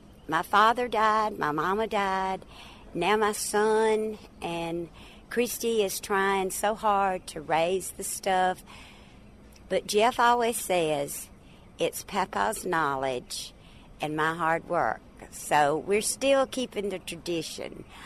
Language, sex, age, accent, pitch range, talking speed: English, female, 50-69, American, 165-210 Hz, 120 wpm